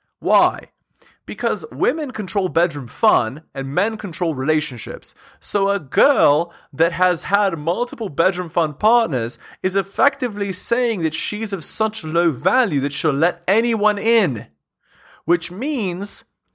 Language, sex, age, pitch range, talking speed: English, male, 20-39, 130-185 Hz, 130 wpm